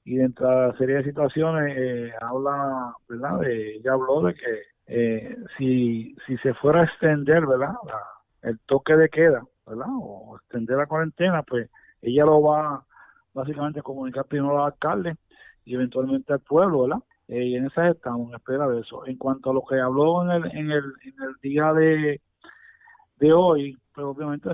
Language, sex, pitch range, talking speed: Spanish, male, 130-155 Hz, 185 wpm